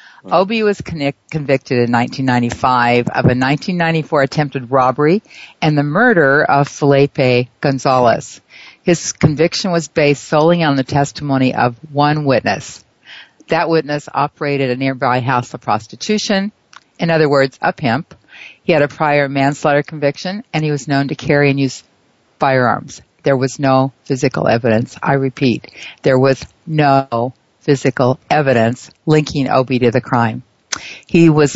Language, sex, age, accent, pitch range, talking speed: English, female, 50-69, American, 130-155 Hz, 140 wpm